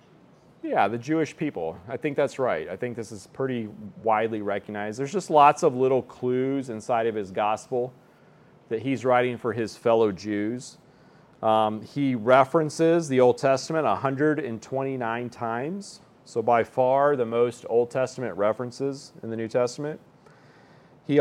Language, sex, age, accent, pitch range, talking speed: English, male, 40-59, American, 120-145 Hz, 150 wpm